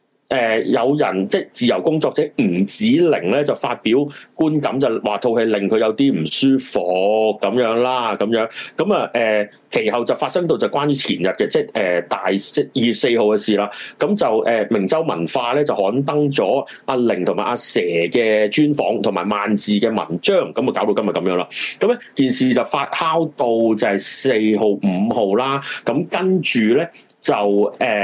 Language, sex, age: Chinese, male, 30-49